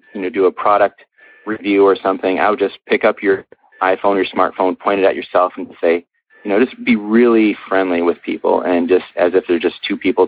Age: 30-49